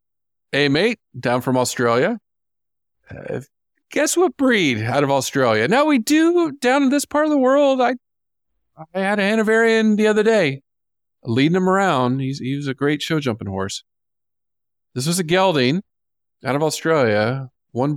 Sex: male